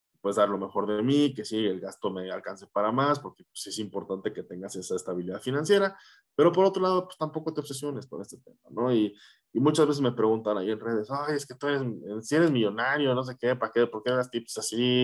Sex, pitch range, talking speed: male, 105-130 Hz, 250 wpm